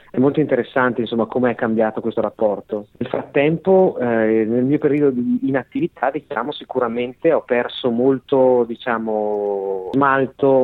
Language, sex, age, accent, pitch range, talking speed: Italian, male, 30-49, native, 105-125 Hz, 135 wpm